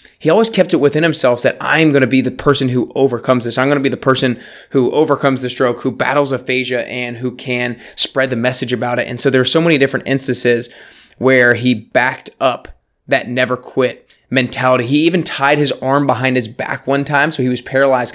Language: English